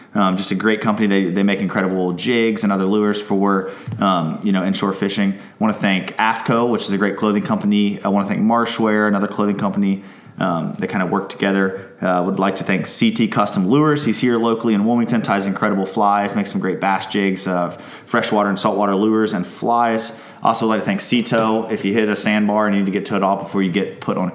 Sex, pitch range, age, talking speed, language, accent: male, 95-110 Hz, 20-39, 240 wpm, English, American